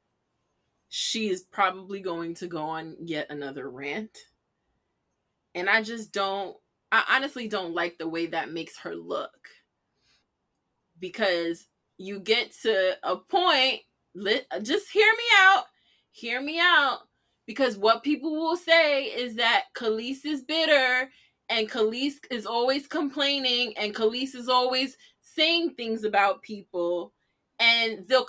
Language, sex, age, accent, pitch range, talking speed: English, female, 20-39, American, 195-310 Hz, 130 wpm